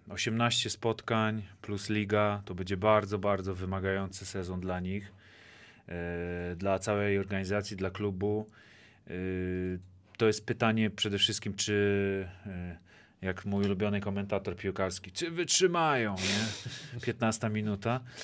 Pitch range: 95-115 Hz